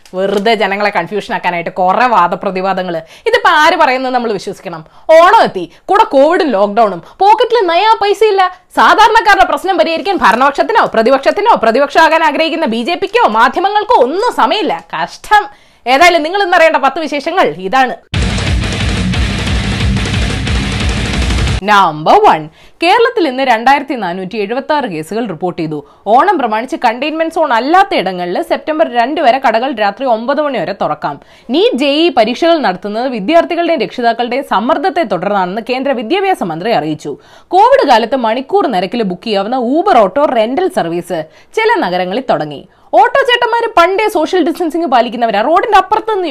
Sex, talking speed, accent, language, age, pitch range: female, 125 wpm, native, Malayalam, 20-39, 220-365 Hz